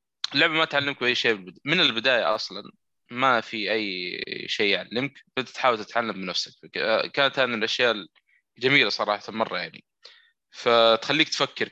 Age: 20-39